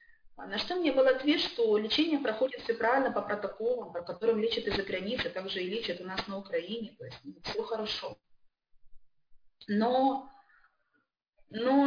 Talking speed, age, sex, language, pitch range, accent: 150 wpm, 20-39, female, Russian, 205-265 Hz, native